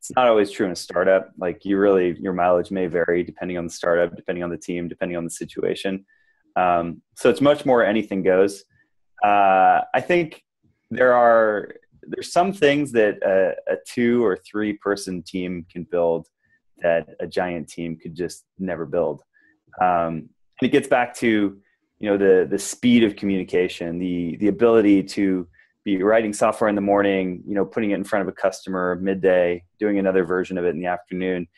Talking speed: 190 wpm